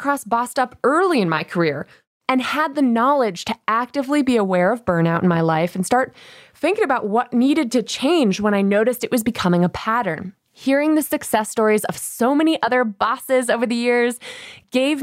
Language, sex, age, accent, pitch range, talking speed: English, female, 20-39, American, 190-280 Hz, 190 wpm